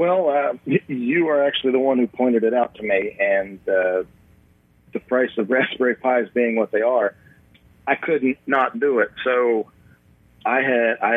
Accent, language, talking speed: American, English, 175 wpm